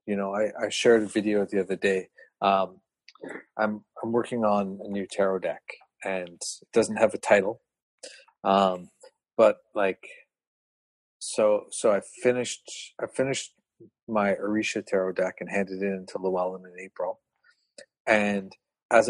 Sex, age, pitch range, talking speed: male, 40-59, 95-120 Hz, 150 wpm